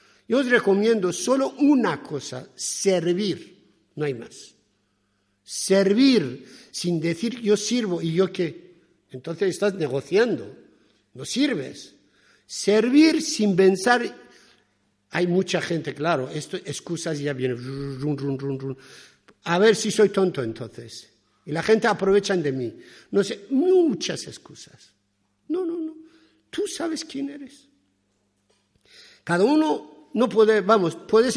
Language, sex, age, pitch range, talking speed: Spanish, male, 60-79, 135-220 Hz, 130 wpm